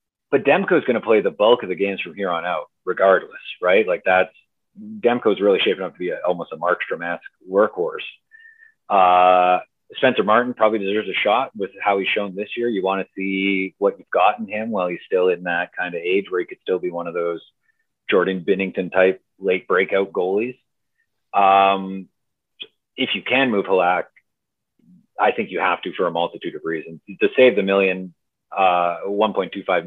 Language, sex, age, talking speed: English, male, 30-49, 190 wpm